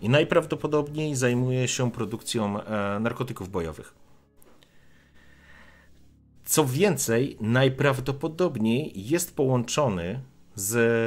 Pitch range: 105-135 Hz